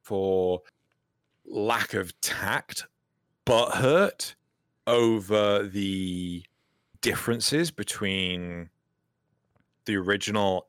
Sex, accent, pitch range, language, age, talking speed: male, British, 100-155 Hz, English, 30-49, 65 wpm